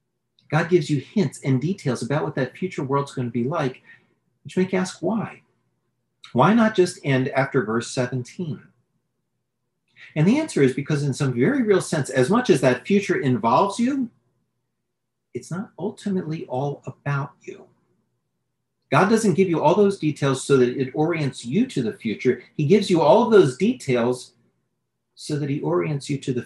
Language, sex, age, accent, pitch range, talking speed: English, male, 40-59, American, 125-185 Hz, 180 wpm